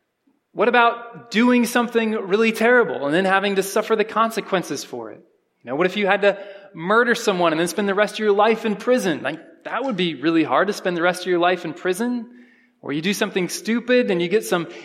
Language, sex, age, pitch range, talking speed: English, male, 20-39, 195-260 Hz, 235 wpm